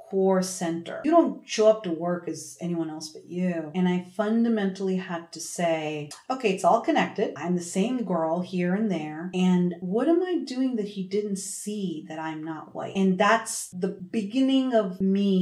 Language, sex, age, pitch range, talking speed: English, female, 30-49, 165-200 Hz, 190 wpm